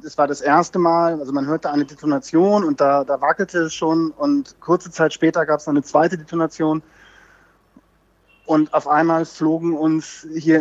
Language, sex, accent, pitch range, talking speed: German, male, German, 145-170 Hz, 180 wpm